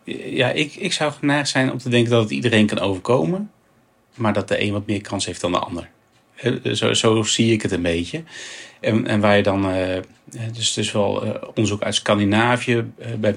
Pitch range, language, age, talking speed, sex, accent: 100-115 Hz, Dutch, 30-49, 220 wpm, male, Dutch